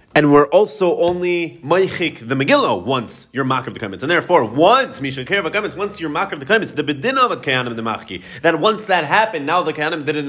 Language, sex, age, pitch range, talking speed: English, male, 30-49, 125-175 Hz, 205 wpm